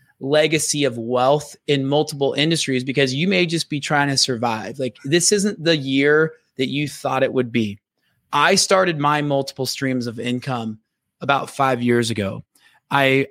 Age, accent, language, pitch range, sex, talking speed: 20-39, American, English, 125-150 Hz, male, 165 wpm